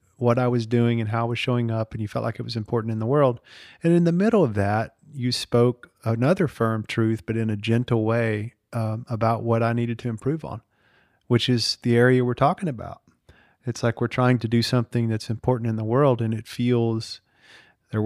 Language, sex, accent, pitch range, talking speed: English, male, American, 110-125 Hz, 225 wpm